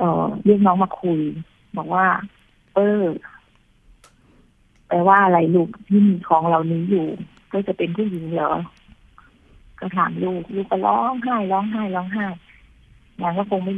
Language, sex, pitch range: Thai, female, 175-205 Hz